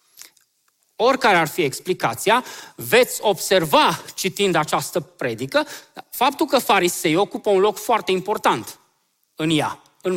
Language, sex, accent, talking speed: Romanian, male, native, 120 wpm